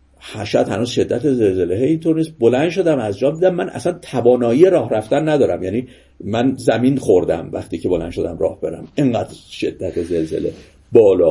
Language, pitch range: Persian, 115-175 Hz